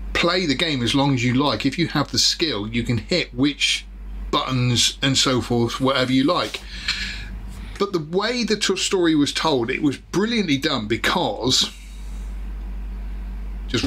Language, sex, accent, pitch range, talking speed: English, male, British, 120-160 Hz, 160 wpm